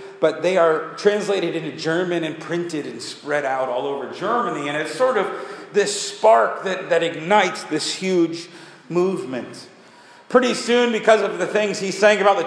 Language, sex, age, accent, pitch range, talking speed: English, male, 40-59, American, 165-220 Hz, 175 wpm